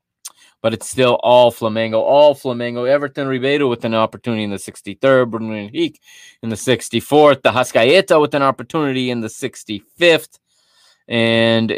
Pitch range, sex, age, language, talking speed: 115-140 Hz, male, 30-49, English, 150 wpm